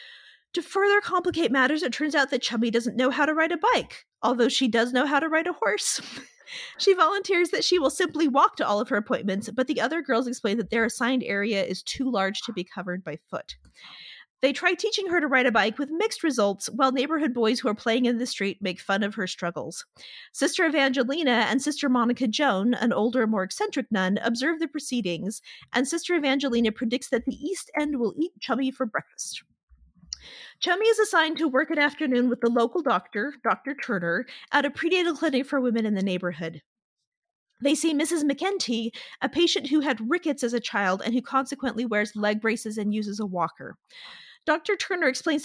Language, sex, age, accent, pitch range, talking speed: English, female, 30-49, American, 220-315 Hz, 200 wpm